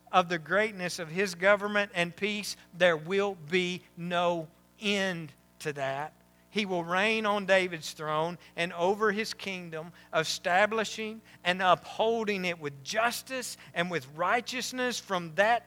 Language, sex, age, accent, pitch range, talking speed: English, male, 50-69, American, 135-205 Hz, 140 wpm